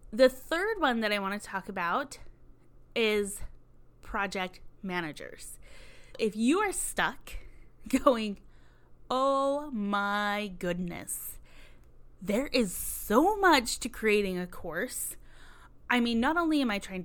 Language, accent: English, American